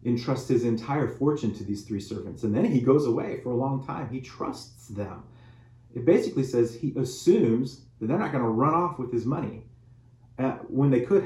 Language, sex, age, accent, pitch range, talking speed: English, male, 30-49, American, 115-130 Hz, 205 wpm